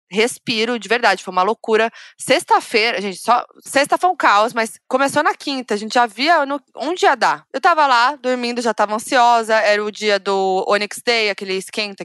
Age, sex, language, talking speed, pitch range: 20-39, female, Portuguese, 205 wpm, 200-255 Hz